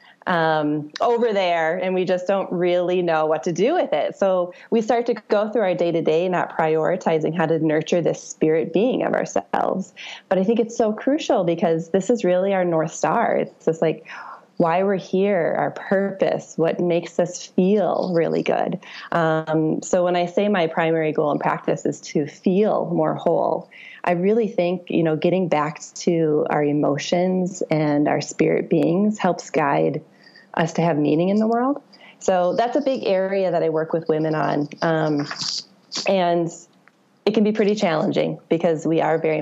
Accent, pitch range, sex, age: American, 160-200 Hz, female, 20-39